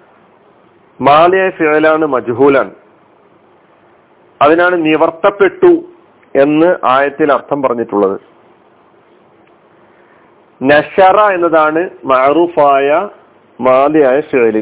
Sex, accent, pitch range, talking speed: male, native, 140-175 Hz, 55 wpm